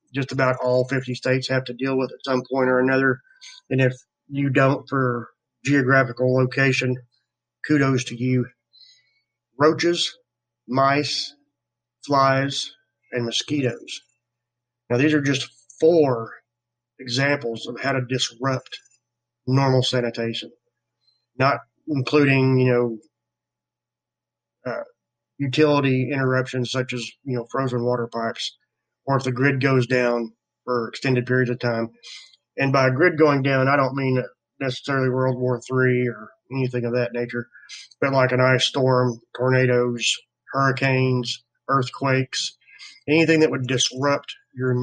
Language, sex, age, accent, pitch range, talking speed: English, male, 30-49, American, 120-135 Hz, 130 wpm